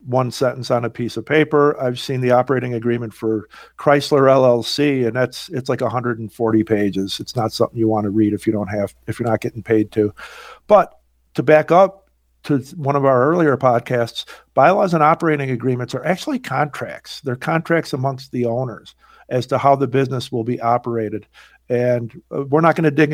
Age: 50-69